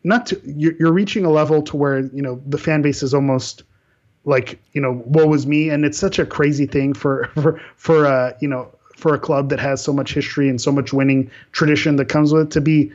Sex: male